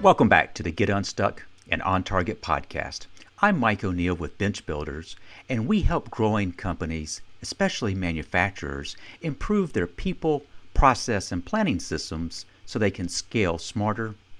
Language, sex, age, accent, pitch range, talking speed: English, male, 50-69, American, 90-120 Hz, 145 wpm